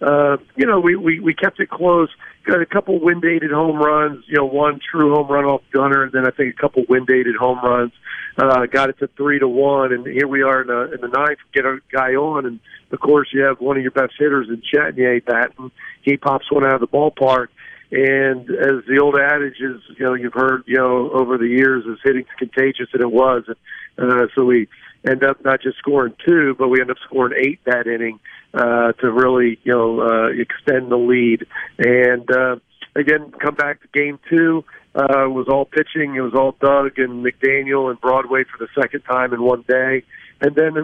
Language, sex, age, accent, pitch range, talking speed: English, male, 50-69, American, 125-145 Hz, 220 wpm